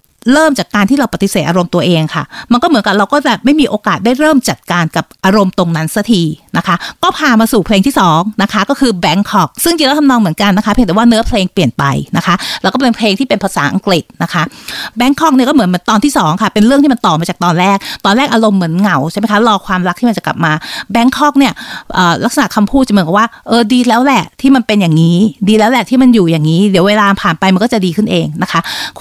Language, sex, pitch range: Thai, female, 185-245 Hz